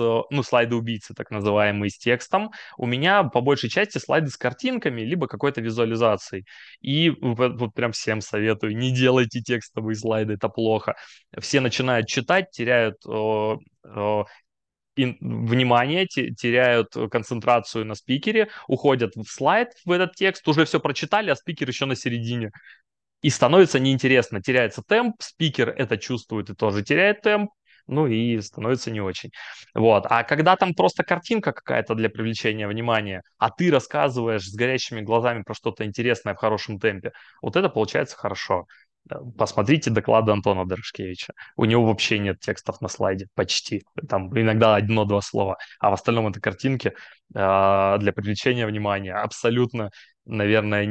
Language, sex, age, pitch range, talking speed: Russian, male, 20-39, 110-135 Hz, 145 wpm